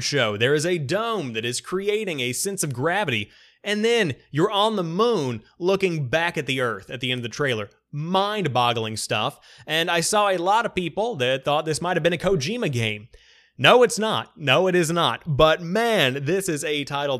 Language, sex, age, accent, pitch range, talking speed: English, male, 30-49, American, 130-185 Hz, 210 wpm